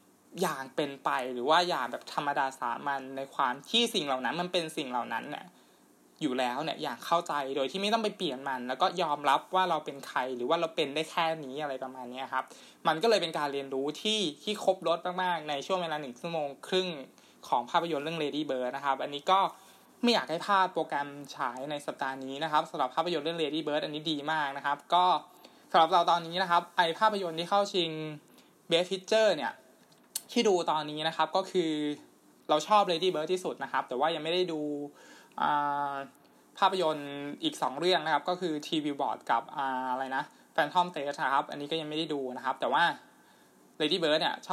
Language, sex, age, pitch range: Thai, male, 20-39, 140-175 Hz